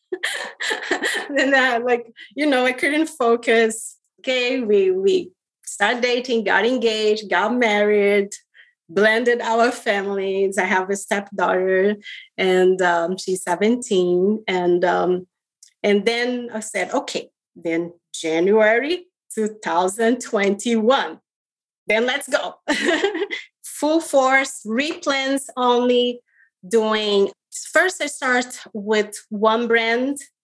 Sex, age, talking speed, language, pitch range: female, 30-49, 105 wpm, English, 210-260 Hz